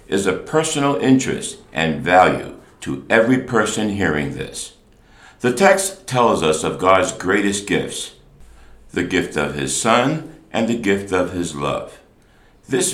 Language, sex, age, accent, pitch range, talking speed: English, male, 60-79, American, 75-120 Hz, 145 wpm